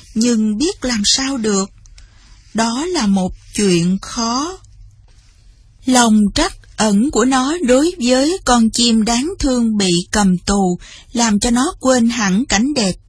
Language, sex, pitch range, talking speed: Vietnamese, female, 195-260 Hz, 140 wpm